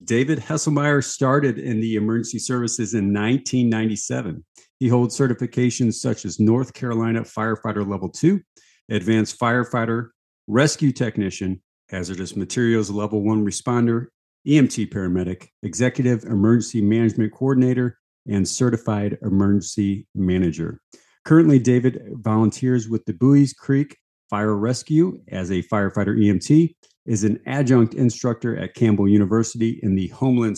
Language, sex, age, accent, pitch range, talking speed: English, male, 50-69, American, 105-125 Hz, 120 wpm